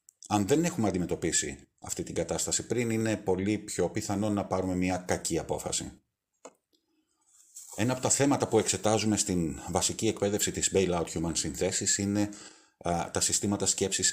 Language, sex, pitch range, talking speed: Greek, male, 95-110 Hz, 150 wpm